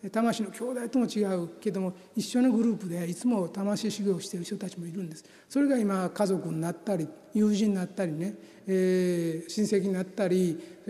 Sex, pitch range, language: male, 180-220 Hz, Japanese